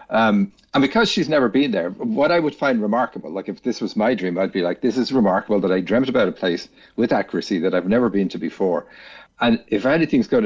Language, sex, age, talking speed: English, male, 60-79, 240 wpm